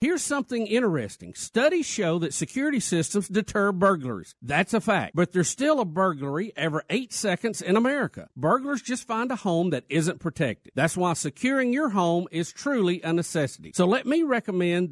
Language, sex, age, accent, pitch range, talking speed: English, male, 50-69, American, 155-230 Hz, 175 wpm